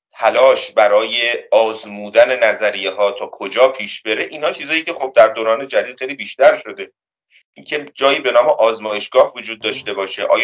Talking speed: 155 wpm